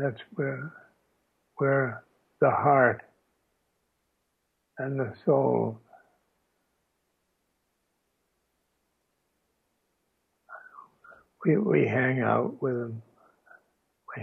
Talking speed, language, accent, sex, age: 65 wpm, English, American, male, 60-79